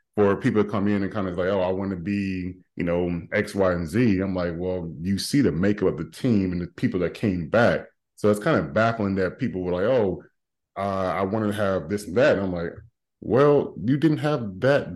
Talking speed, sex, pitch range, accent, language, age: 250 wpm, male, 95-110 Hz, American, English, 30-49